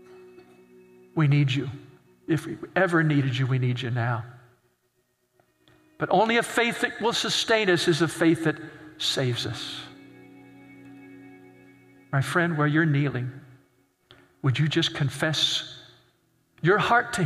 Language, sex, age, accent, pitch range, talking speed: English, male, 50-69, American, 120-185 Hz, 130 wpm